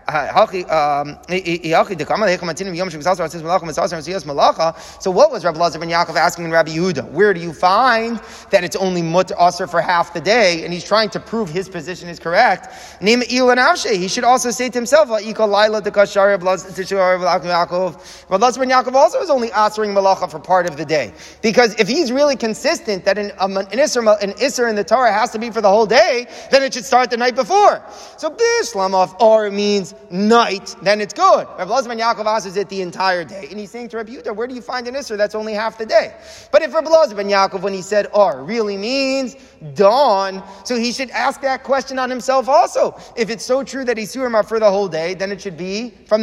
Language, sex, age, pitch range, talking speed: English, male, 30-49, 175-235 Hz, 185 wpm